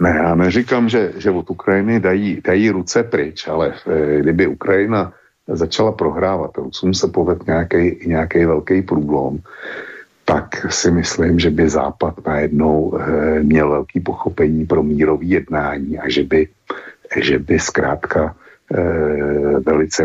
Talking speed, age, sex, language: 125 wpm, 60-79, male, Slovak